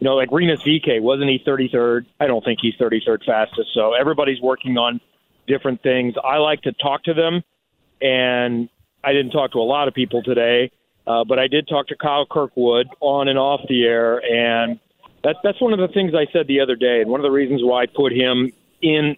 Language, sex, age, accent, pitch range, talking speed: English, male, 40-59, American, 125-155 Hz, 220 wpm